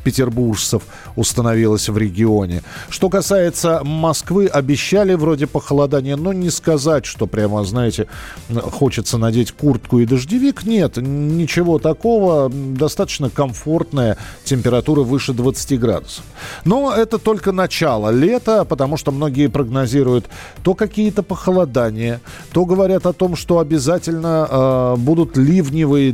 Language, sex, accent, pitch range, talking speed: Russian, male, native, 125-175 Hz, 115 wpm